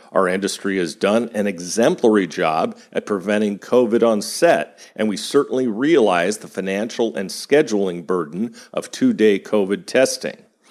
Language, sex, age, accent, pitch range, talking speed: English, male, 50-69, American, 100-120 Hz, 135 wpm